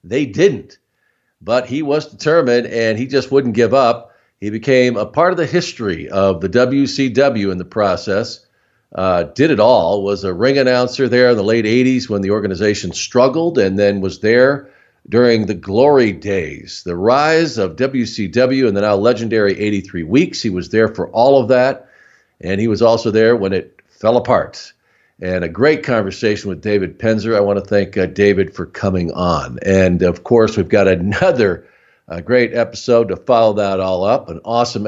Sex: male